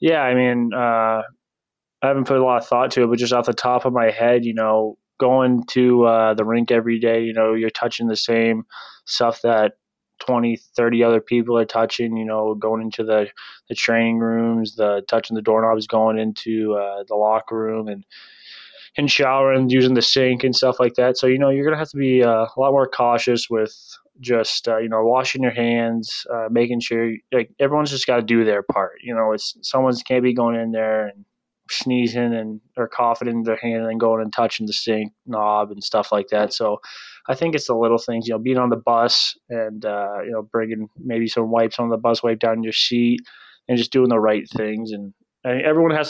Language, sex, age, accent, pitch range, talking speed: English, male, 20-39, American, 110-125 Hz, 225 wpm